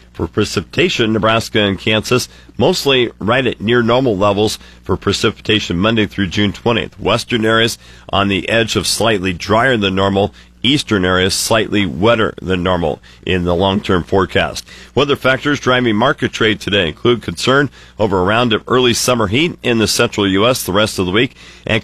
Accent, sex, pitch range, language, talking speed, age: American, male, 95-115 Hz, English, 170 wpm, 50-69